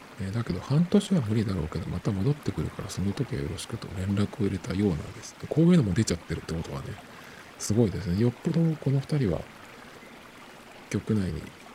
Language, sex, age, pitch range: Japanese, male, 50-69, 95-140 Hz